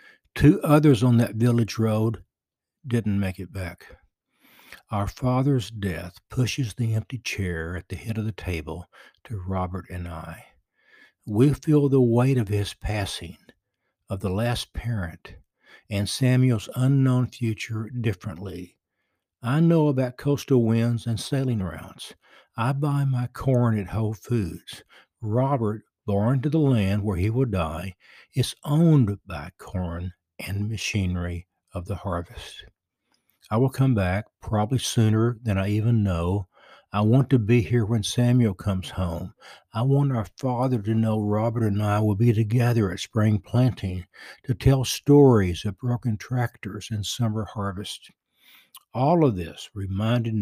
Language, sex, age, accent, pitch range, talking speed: English, male, 60-79, American, 95-120 Hz, 145 wpm